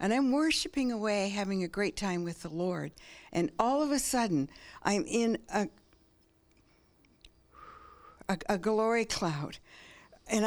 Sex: female